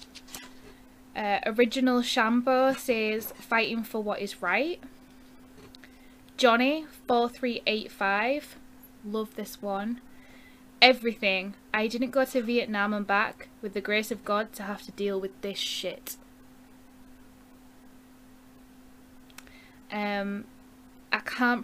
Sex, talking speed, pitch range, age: female, 105 wpm, 210-255 Hz, 10-29